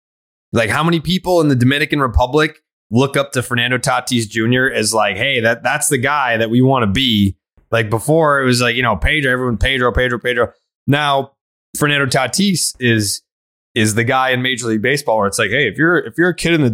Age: 20-39